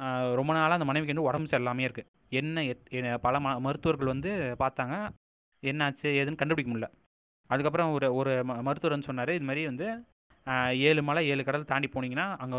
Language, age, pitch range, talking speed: Tamil, 20-39, 125-155 Hz, 160 wpm